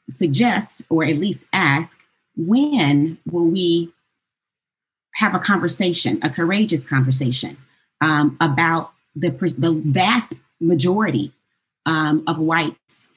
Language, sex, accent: English, female, American